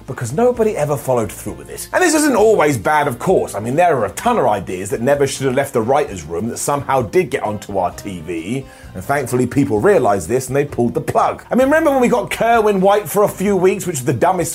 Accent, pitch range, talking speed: British, 130-200 Hz, 260 wpm